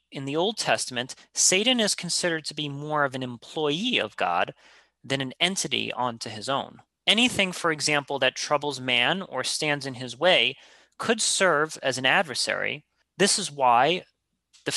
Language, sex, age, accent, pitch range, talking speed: English, male, 30-49, American, 130-180 Hz, 165 wpm